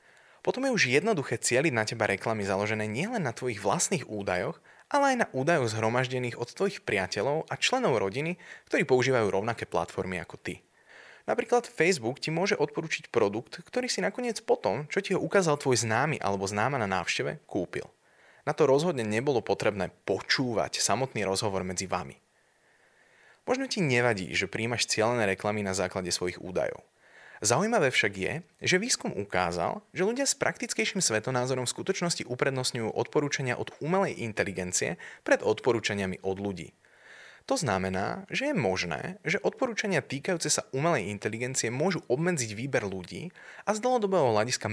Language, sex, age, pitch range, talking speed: Slovak, male, 20-39, 105-175 Hz, 155 wpm